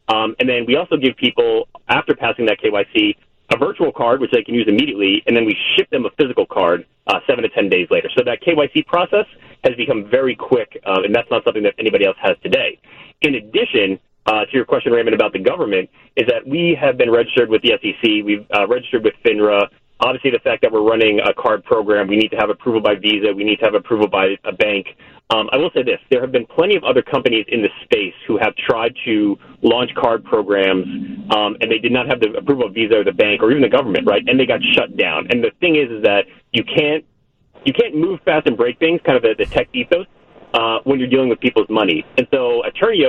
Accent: American